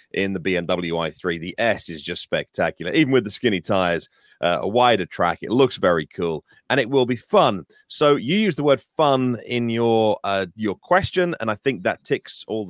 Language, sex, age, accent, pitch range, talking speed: English, male, 30-49, British, 110-145 Hz, 210 wpm